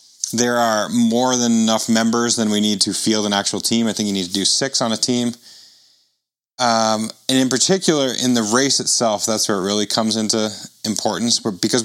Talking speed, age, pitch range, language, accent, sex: 205 wpm, 30-49, 105-130 Hz, English, American, male